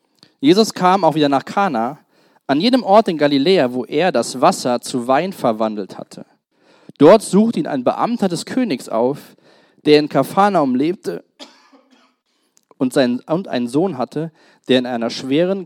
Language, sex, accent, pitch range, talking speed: German, male, German, 125-180 Hz, 155 wpm